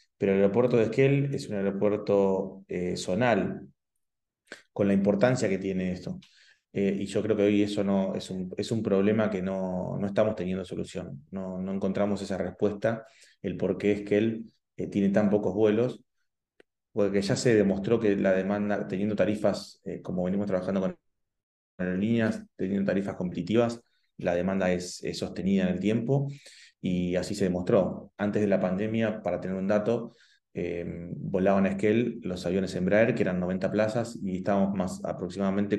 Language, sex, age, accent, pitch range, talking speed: Spanish, male, 20-39, Argentinian, 95-110 Hz, 170 wpm